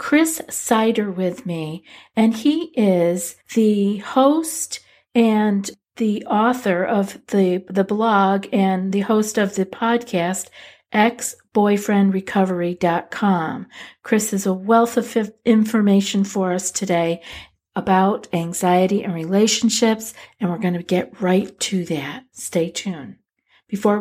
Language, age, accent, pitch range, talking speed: English, 50-69, American, 185-230 Hz, 120 wpm